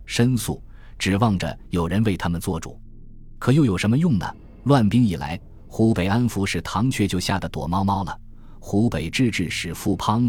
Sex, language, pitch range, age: male, Chinese, 85-115 Hz, 20-39